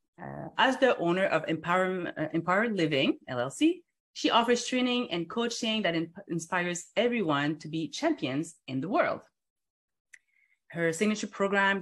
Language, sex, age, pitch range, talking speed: English, female, 30-49, 170-235 Hz, 130 wpm